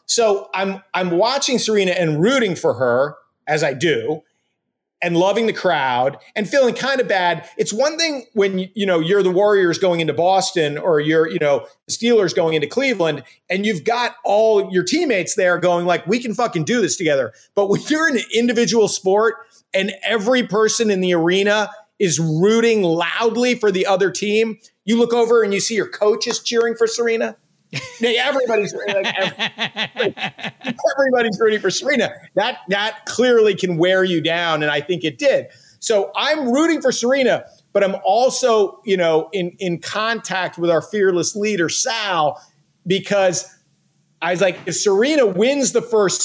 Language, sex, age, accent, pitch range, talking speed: English, male, 40-59, American, 175-230 Hz, 170 wpm